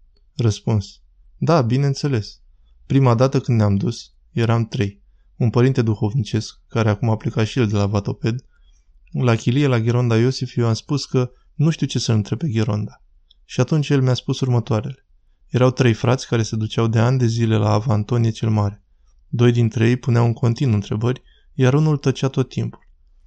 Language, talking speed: Romanian, 180 wpm